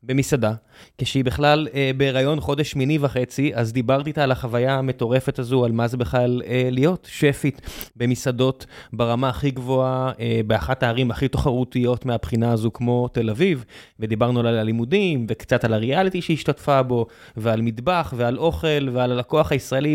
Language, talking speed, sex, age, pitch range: Hebrew, 155 wpm, male, 20-39, 120-155 Hz